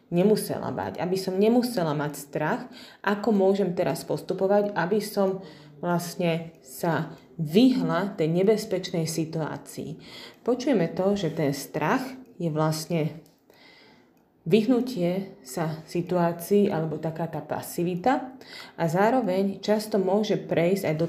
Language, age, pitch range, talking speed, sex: Slovak, 30-49, 165-205 Hz, 115 wpm, female